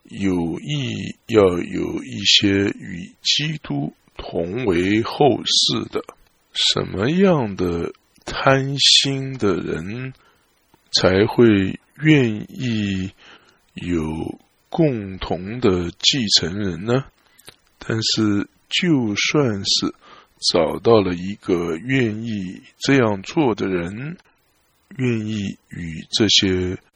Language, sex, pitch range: English, male, 100-140 Hz